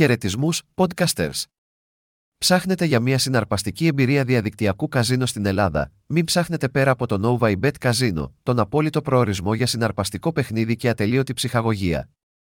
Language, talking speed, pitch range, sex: Greek, 130 wpm, 105-140 Hz, male